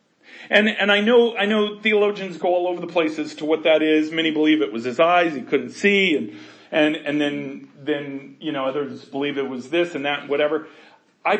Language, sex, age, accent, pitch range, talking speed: English, male, 40-59, American, 180-245 Hz, 220 wpm